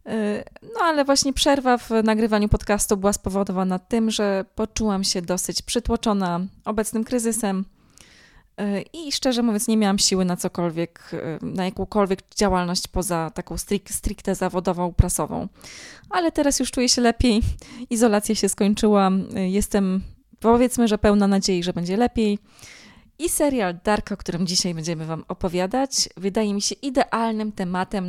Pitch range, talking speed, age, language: 180-225 Hz, 135 wpm, 20-39, Polish